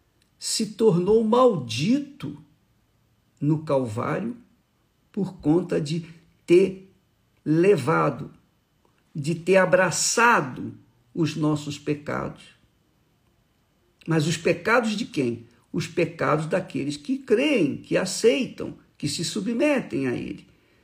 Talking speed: 95 wpm